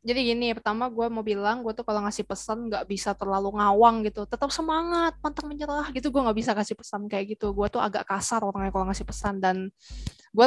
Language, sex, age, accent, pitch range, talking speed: Indonesian, female, 20-39, native, 200-235 Hz, 220 wpm